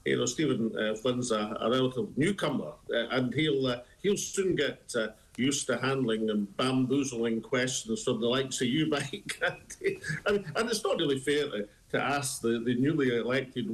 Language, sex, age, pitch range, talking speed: English, male, 50-69, 120-150 Hz, 180 wpm